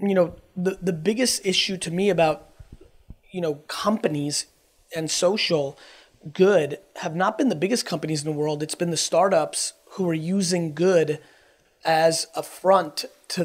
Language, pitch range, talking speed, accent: English, 165-195 Hz, 160 wpm, American